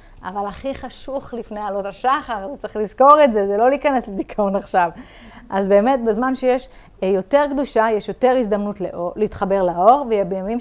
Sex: female